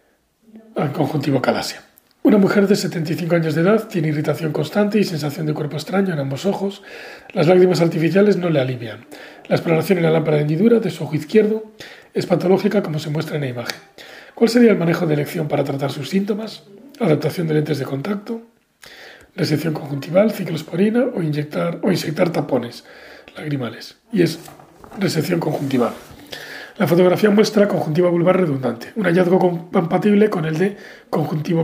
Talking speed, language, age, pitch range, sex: 165 wpm, Spanish, 40-59, 155-200 Hz, male